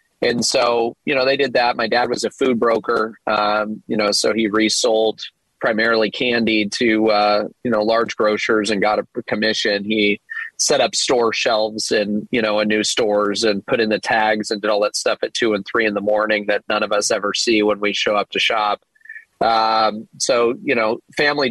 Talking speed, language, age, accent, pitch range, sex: 210 wpm, English, 30-49, American, 105-120 Hz, male